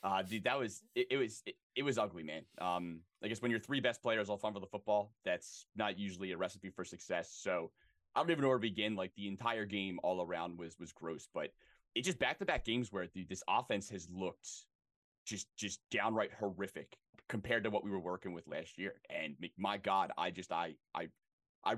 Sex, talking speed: male, 225 wpm